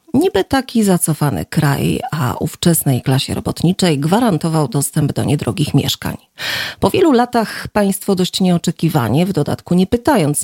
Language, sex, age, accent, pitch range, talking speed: Polish, female, 40-59, native, 150-210 Hz, 130 wpm